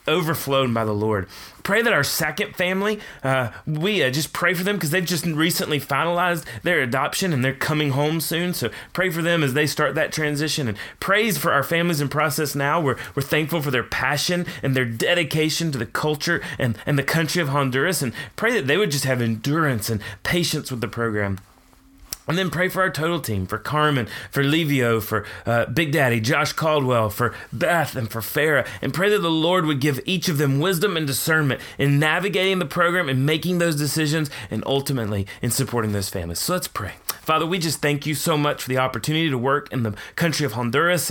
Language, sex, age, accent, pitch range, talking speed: English, male, 30-49, American, 130-175 Hz, 210 wpm